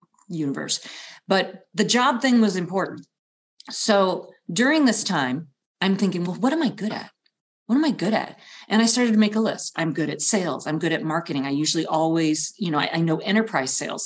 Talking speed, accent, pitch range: 210 wpm, American, 160-205 Hz